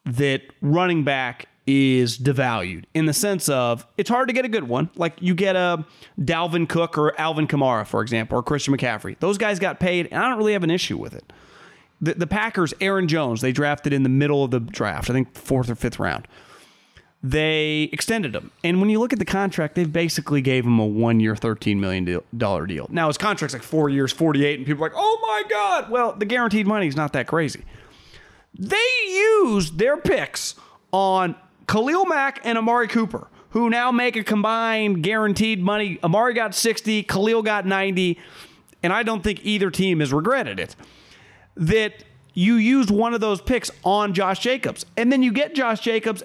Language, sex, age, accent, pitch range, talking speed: English, male, 30-49, American, 145-235 Hz, 195 wpm